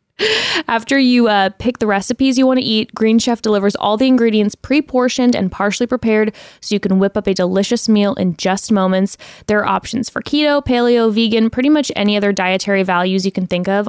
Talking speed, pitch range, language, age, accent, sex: 205 wpm, 195-245 Hz, English, 10-29, American, female